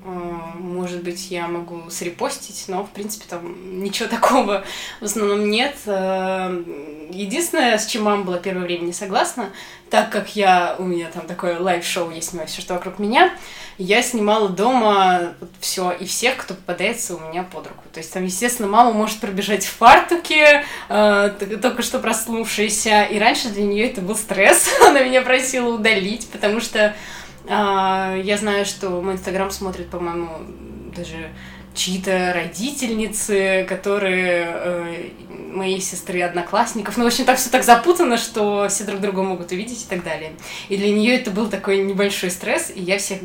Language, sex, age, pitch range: Russian, female, 20-39, 180-215 Hz